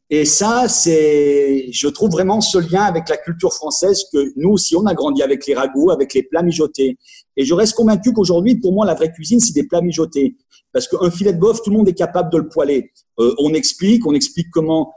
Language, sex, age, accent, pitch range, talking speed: English, male, 50-69, French, 150-215 Hz, 235 wpm